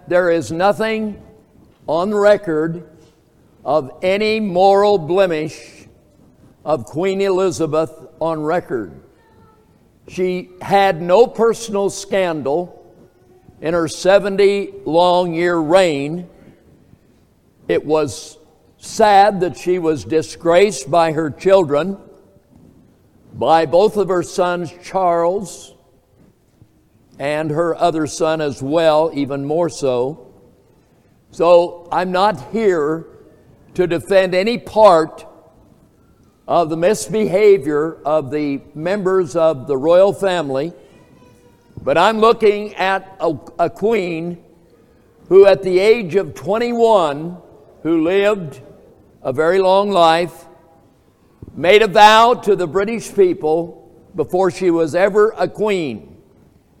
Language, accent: English, American